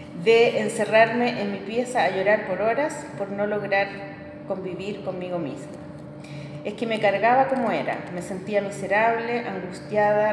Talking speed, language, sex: 145 wpm, Spanish, female